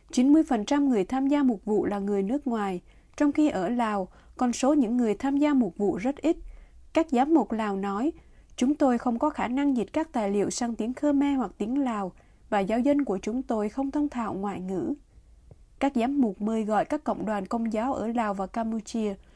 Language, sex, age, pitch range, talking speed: Vietnamese, female, 20-39, 205-275 Hz, 215 wpm